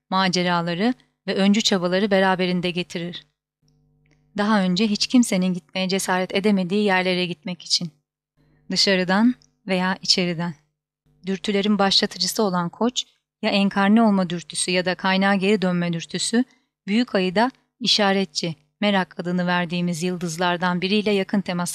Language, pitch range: Turkish, 175-205 Hz